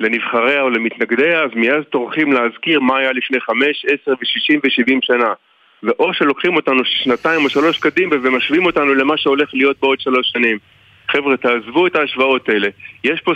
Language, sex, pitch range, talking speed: Hebrew, male, 125-150 Hz, 165 wpm